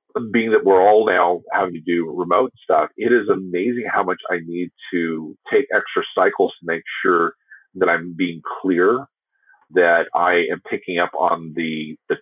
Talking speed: 175 wpm